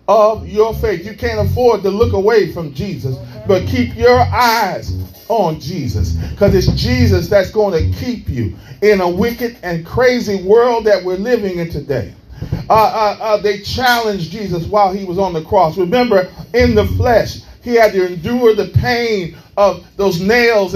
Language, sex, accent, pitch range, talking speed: English, male, American, 170-230 Hz, 175 wpm